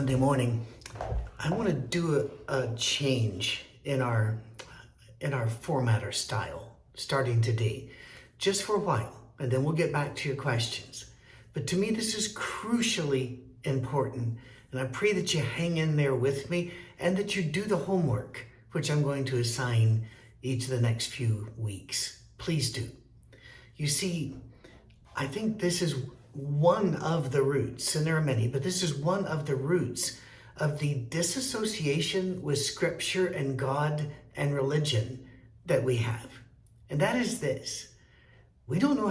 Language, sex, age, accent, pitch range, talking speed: English, male, 50-69, American, 125-165 Hz, 160 wpm